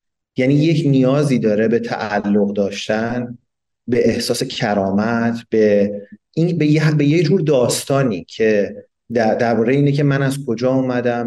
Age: 30-49